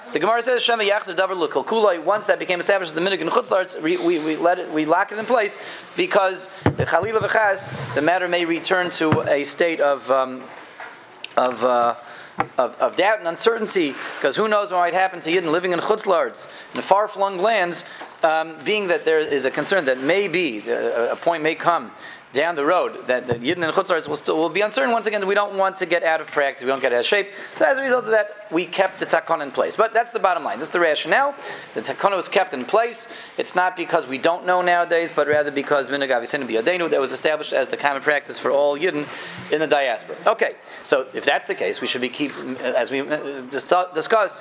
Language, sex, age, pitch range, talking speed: English, male, 30-49, 145-210 Hz, 210 wpm